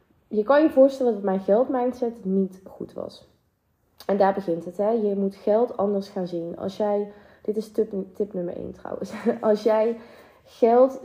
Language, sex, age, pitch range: Dutch, female, 20-39, 190-230 Hz